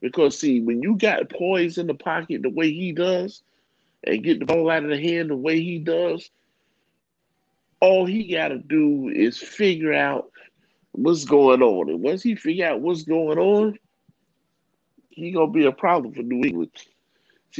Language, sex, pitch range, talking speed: English, male, 135-180 Hz, 185 wpm